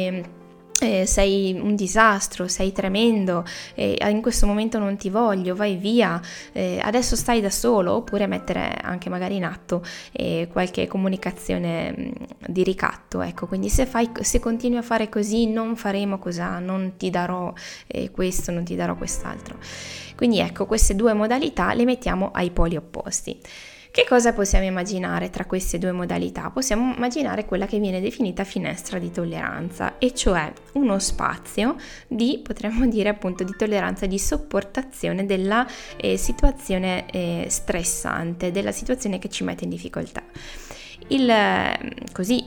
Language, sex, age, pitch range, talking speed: Italian, female, 20-39, 180-220 Hz, 140 wpm